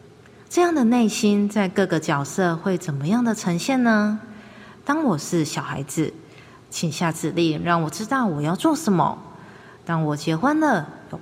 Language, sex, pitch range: Chinese, female, 165-225 Hz